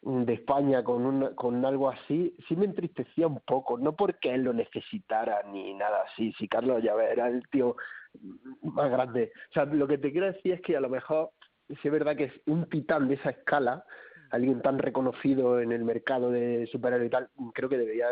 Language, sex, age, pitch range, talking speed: Spanish, male, 30-49, 115-135 Hz, 210 wpm